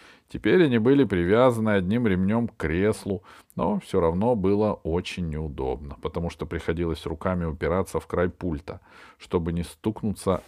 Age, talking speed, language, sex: 40-59, 145 wpm, Russian, male